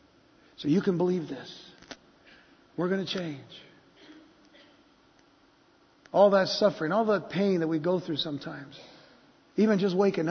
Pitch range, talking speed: 180-280 Hz, 135 wpm